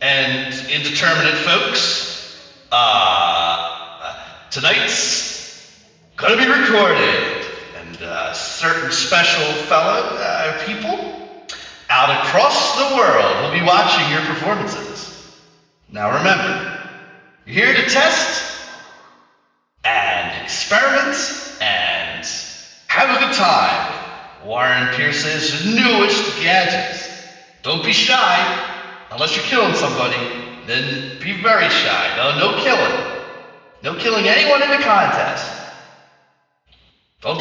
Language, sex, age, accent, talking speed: English, male, 40-59, American, 100 wpm